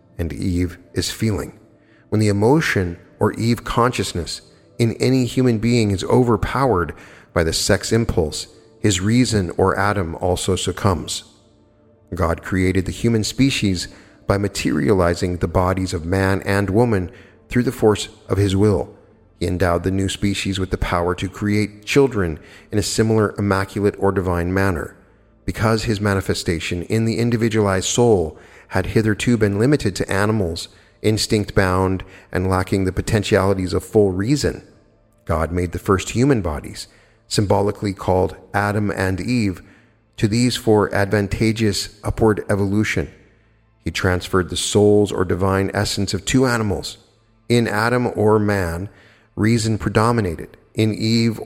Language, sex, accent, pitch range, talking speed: English, male, American, 95-110 Hz, 140 wpm